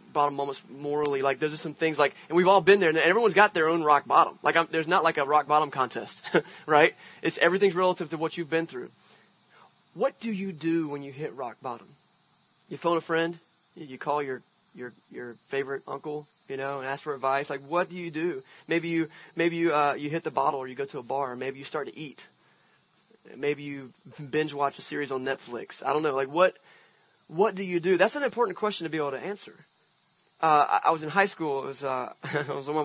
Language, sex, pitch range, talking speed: English, male, 140-170 Hz, 235 wpm